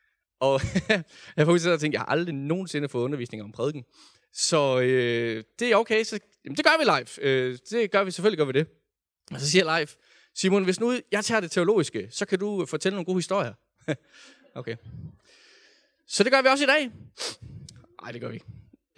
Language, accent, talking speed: Danish, native, 200 wpm